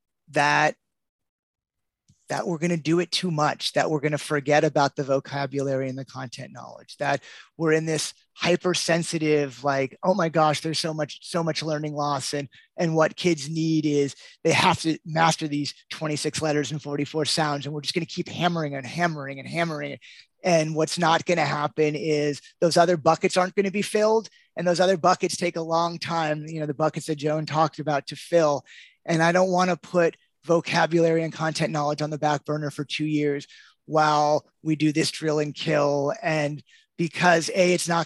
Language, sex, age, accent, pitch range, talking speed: English, male, 30-49, American, 150-170 Hz, 200 wpm